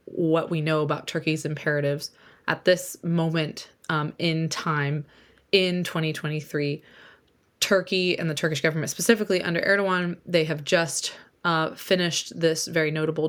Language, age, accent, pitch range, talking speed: English, 20-39, American, 155-185 Hz, 135 wpm